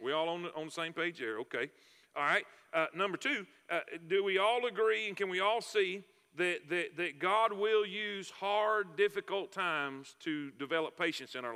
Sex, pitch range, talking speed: male, 160-225 Hz, 200 wpm